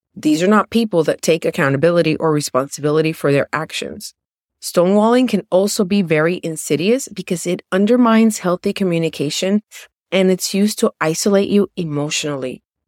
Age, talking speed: 30-49, 140 wpm